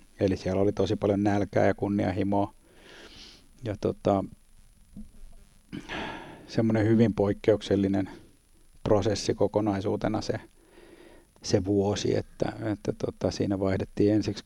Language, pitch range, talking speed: Finnish, 100-105 Hz, 100 wpm